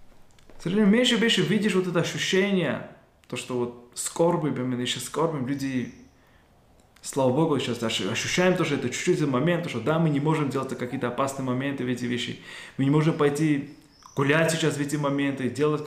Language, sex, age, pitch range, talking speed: Russian, male, 20-39, 140-180 Hz, 180 wpm